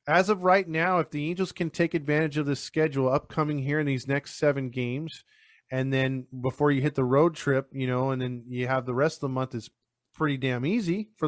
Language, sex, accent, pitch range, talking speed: English, male, American, 125-155 Hz, 235 wpm